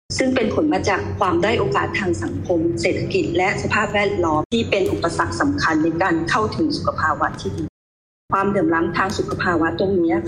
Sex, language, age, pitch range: female, Thai, 20-39, 175-225 Hz